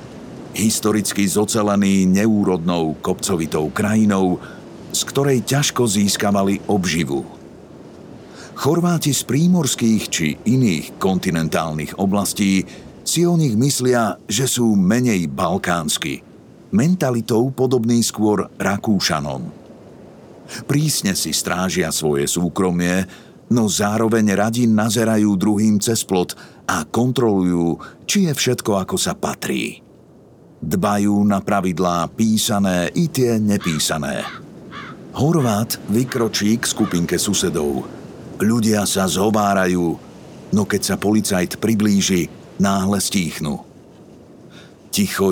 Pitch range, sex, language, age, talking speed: 95-120 Hz, male, Slovak, 50-69, 95 wpm